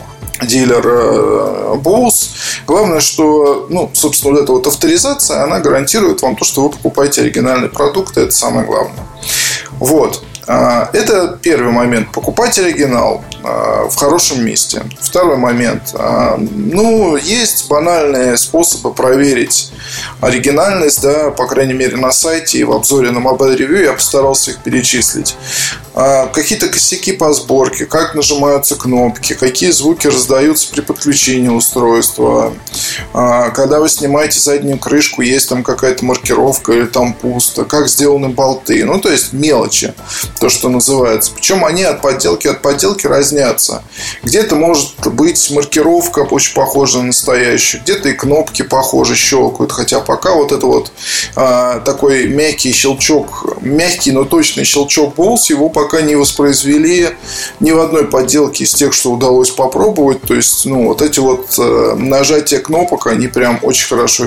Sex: male